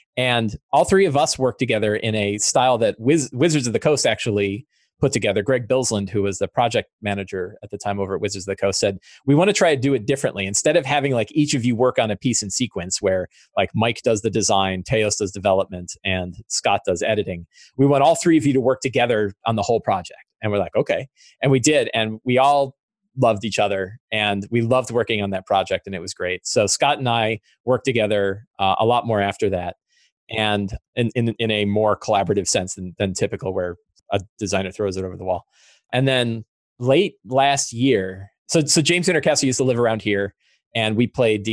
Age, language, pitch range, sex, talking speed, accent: 30-49, English, 100-130 Hz, male, 225 wpm, American